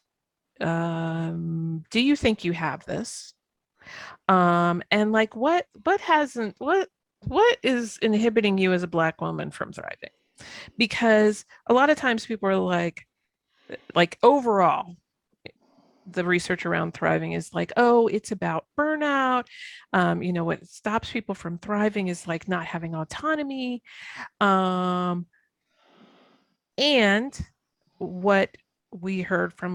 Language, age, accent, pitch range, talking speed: English, 40-59, American, 180-230 Hz, 125 wpm